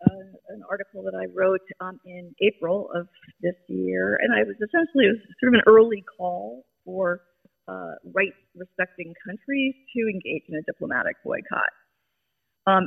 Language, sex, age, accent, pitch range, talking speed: English, female, 30-49, American, 185-255 Hz, 165 wpm